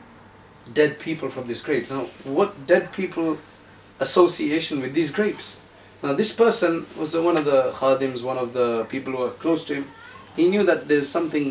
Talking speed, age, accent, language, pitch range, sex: 180 wpm, 30-49, South African, English, 135-170 Hz, male